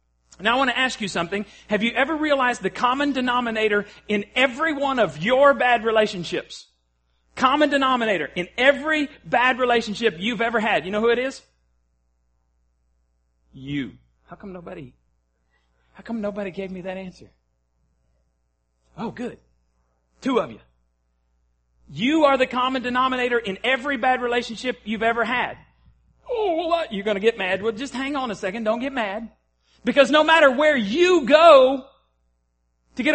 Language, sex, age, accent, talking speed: English, male, 40-59, American, 155 wpm